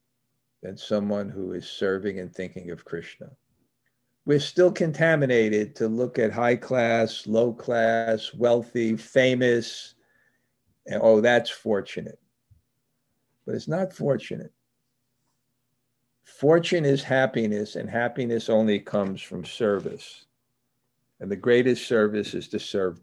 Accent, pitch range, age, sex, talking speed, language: American, 115-125 Hz, 50-69, male, 115 wpm, English